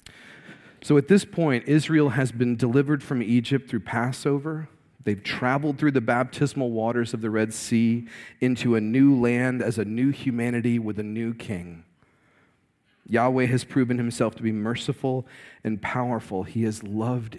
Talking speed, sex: 160 wpm, male